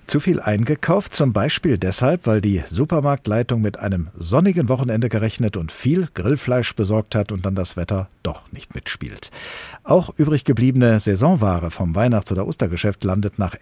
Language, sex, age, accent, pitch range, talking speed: German, male, 50-69, German, 100-135 Hz, 160 wpm